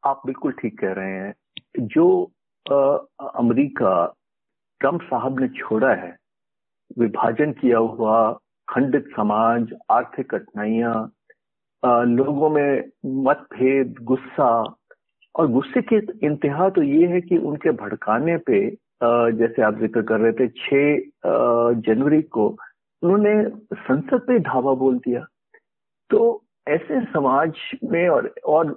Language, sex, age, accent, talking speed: Hindi, male, 50-69, native, 120 wpm